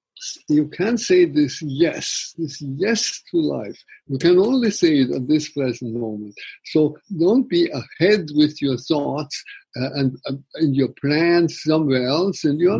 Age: 60-79